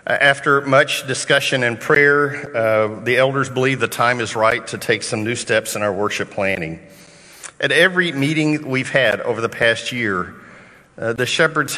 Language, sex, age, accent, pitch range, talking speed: English, male, 50-69, American, 110-135 Hz, 175 wpm